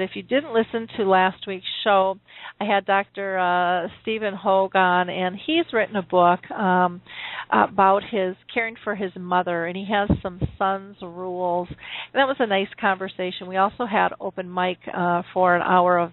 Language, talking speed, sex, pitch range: English, 180 wpm, female, 180-205 Hz